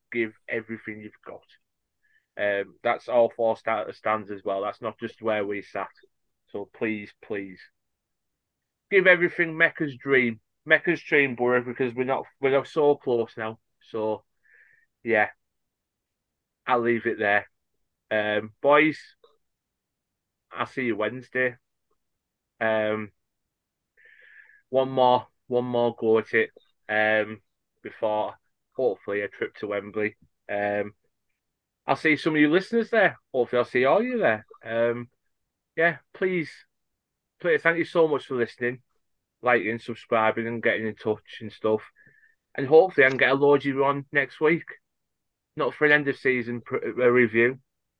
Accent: British